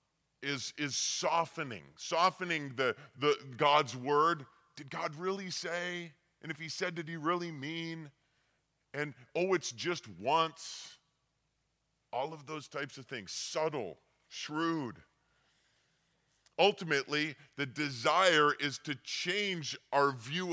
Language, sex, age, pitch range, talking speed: English, female, 40-59, 135-170 Hz, 120 wpm